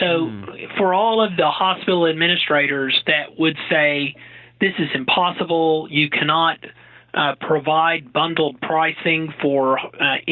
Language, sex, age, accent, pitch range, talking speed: English, male, 40-59, American, 145-180 Hz, 120 wpm